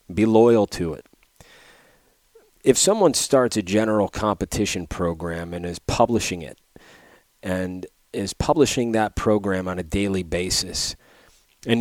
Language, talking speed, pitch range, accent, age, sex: English, 125 wpm, 90-115 Hz, American, 30-49, male